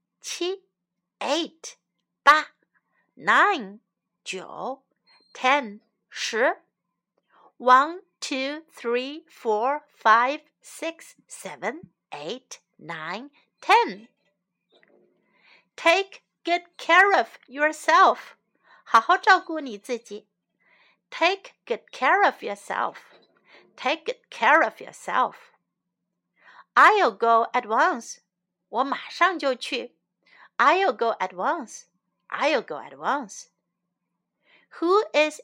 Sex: female